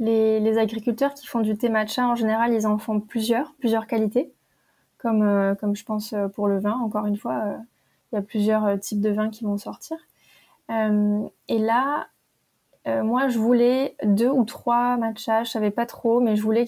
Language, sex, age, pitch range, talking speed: French, female, 20-39, 215-240 Hz, 200 wpm